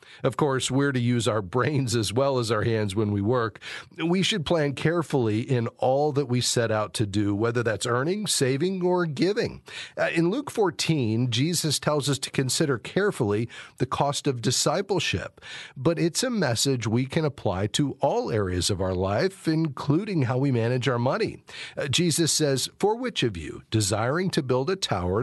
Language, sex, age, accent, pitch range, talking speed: English, male, 50-69, American, 110-155 Hz, 180 wpm